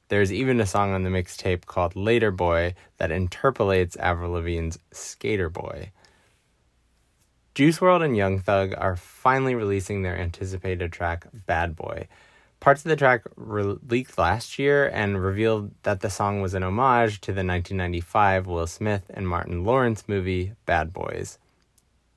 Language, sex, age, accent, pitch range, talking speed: English, male, 20-39, American, 90-115 Hz, 150 wpm